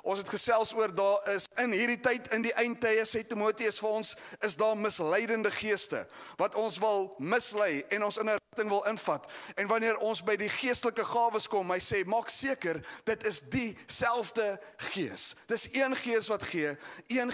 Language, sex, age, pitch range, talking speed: English, male, 30-49, 200-235 Hz, 185 wpm